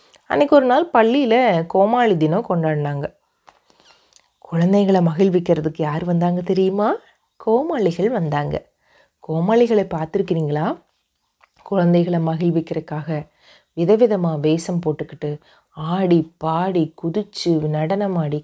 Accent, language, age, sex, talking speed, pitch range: native, Tamil, 30-49, female, 85 wpm, 160-215 Hz